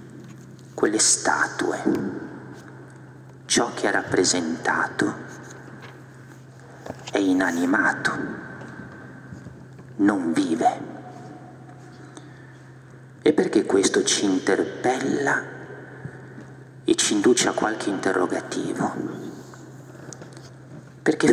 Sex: male